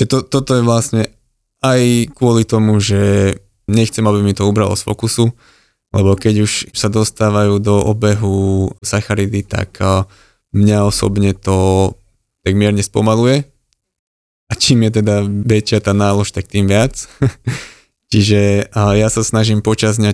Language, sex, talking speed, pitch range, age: Slovak, male, 135 wpm, 100-115 Hz, 20-39